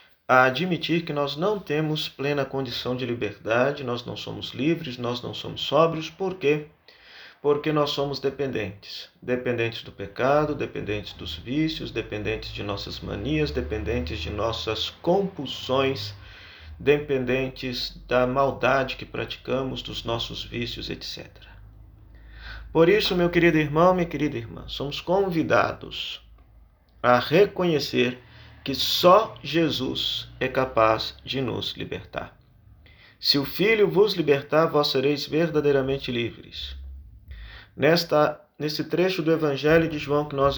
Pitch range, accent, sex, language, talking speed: 110-150 Hz, Brazilian, male, Portuguese, 125 wpm